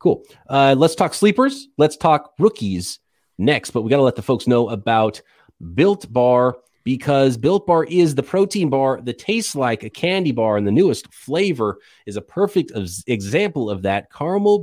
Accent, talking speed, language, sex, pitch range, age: American, 180 wpm, English, male, 120-175 Hz, 30-49